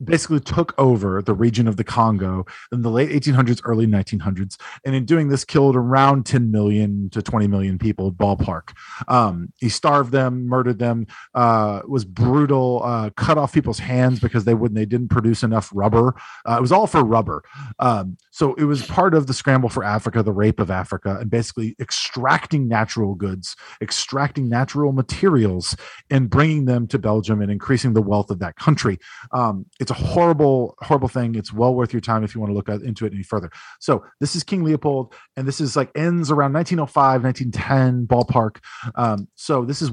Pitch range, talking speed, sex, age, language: 110-140 Hz, 190 wpm, male, 40-59, English